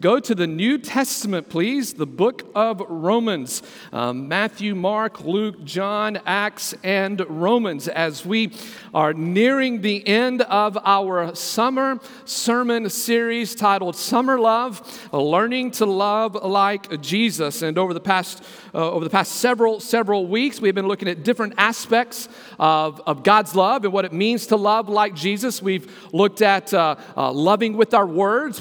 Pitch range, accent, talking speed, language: 185-230 Hz, American, 155 wpm, English